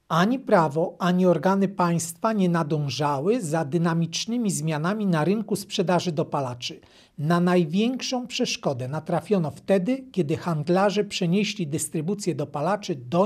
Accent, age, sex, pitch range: native, 40-59, male, 155-210 Hz